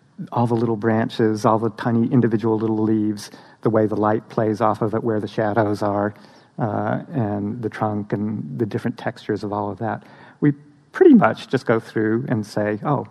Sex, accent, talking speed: male, American, 195 wpm